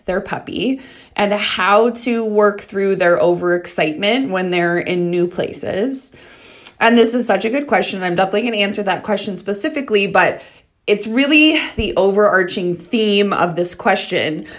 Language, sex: English, female